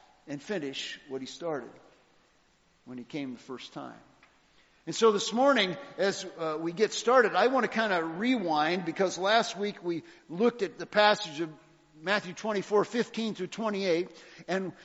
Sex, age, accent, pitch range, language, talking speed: male, 50-69, American, 160-225 Hz, English, 165 wpm